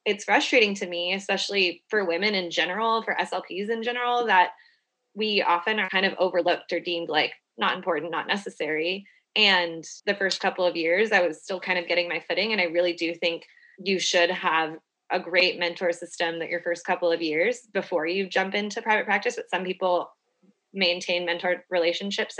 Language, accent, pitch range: English, American, 170-200 Hz